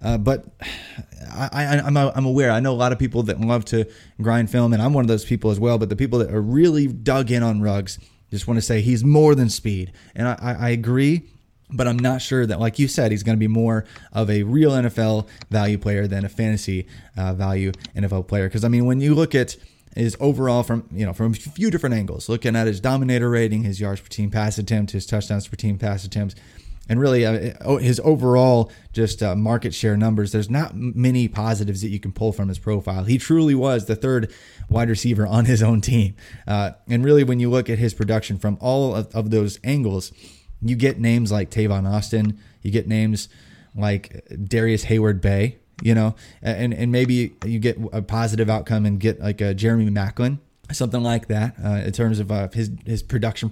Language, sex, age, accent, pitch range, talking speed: English, male, 20-39, American, 105-125 Hz, 215 wpm